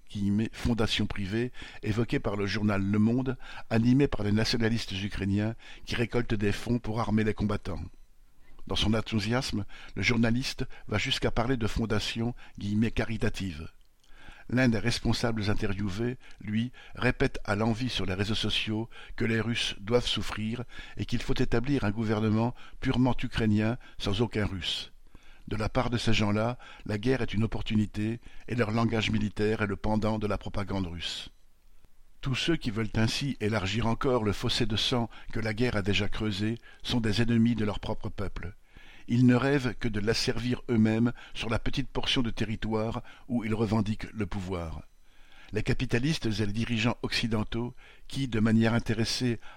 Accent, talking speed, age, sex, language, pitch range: French, 170 wpm, 50-69, male, French, 105-120 Hz